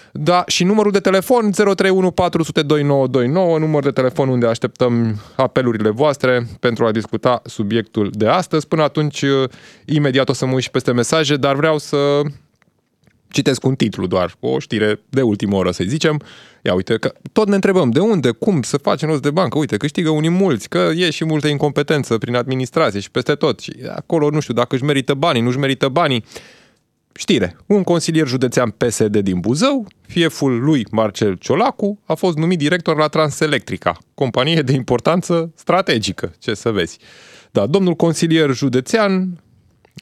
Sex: male